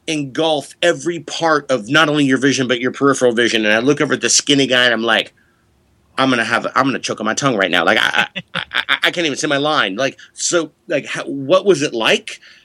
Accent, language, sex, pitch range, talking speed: American, English, male, 115-145 Hz, 255 wpm